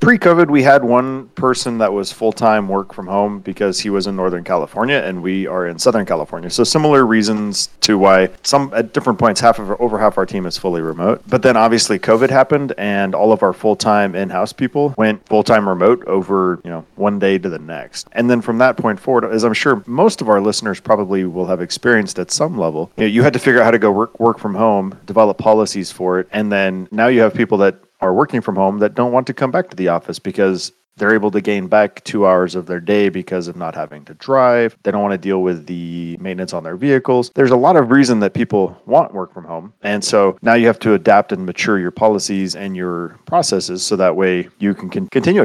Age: 30-49